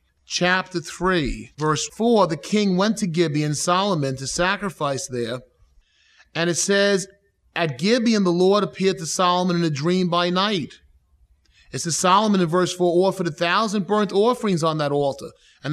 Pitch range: 150-195 Hz